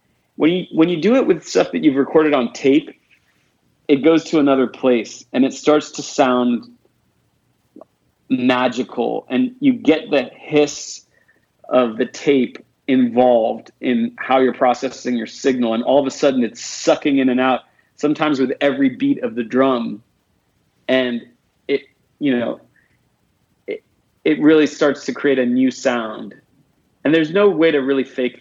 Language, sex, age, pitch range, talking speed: English, male, 40-59, 125-155 Hz, 160 wpm